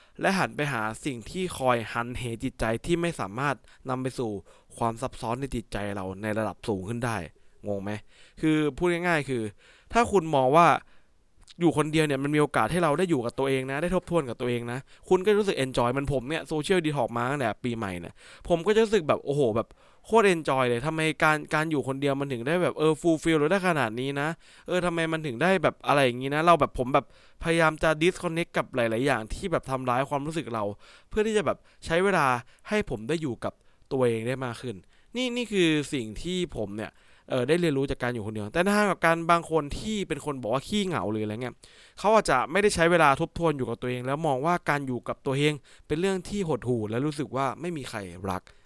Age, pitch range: 20-39, 120-170 Hz